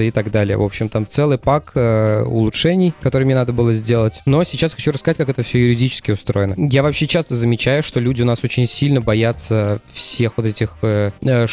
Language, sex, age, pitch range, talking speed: Russian, male, 20-39, 110-130 Hz, 210 wpm